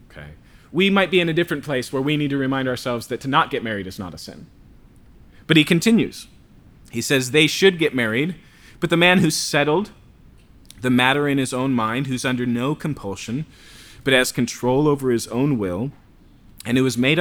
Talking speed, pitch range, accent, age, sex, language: 200 wpm, 110-150 Hz, American, 30-49, male, English